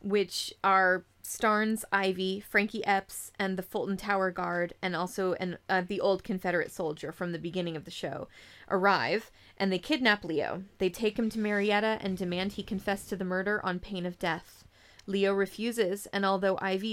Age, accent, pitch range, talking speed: 30-49, American, 180-205 Hz, 175 wpm